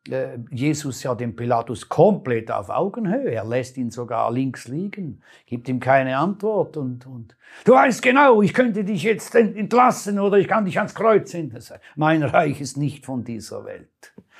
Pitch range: 125-160 Hz